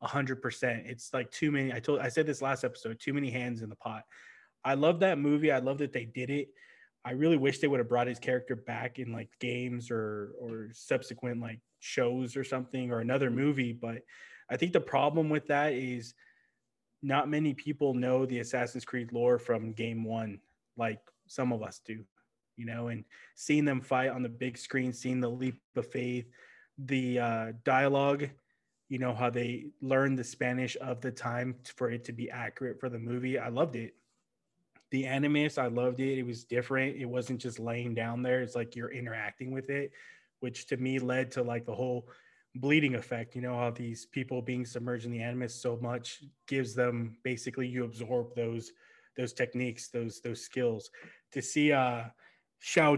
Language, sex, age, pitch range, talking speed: English, male, 20-39, 120-135 Hz, 195 wpm